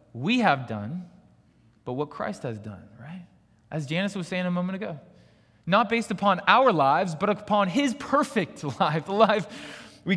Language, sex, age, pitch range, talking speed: English, male, 20-39, 115-180 Hz, 170 wpm